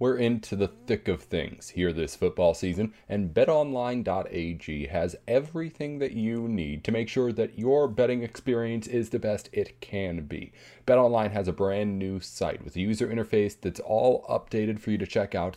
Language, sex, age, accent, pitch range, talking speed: English, male, 30-49, American, 90-115 Hz, 185 wpm